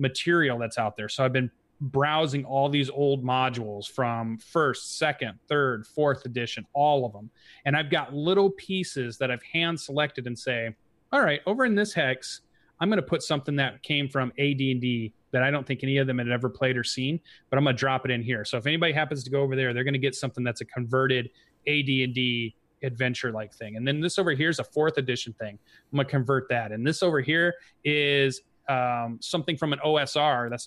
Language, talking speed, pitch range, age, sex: English, 230 wpm, 120-150 Hz, 30-49, male